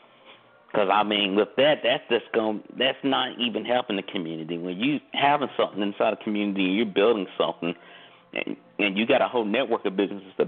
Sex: male